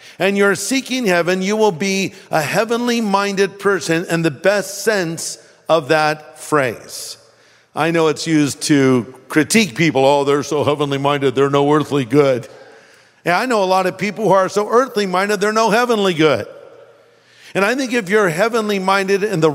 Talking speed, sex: 170 wpm, male